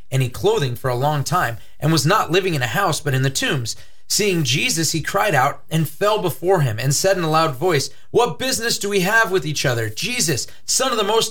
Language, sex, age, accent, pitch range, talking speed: English, male, 30-49, American, 120-175 Hz, 240 wpm